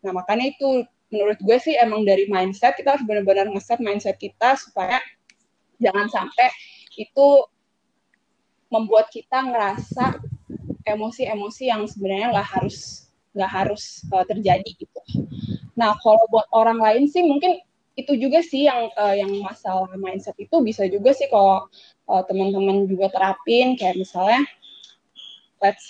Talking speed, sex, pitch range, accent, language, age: 135 wpm, female, 195-255 Hz, native, Indonesian, 20-39